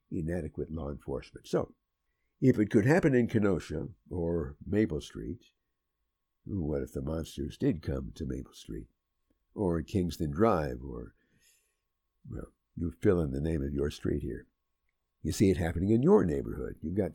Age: 60-79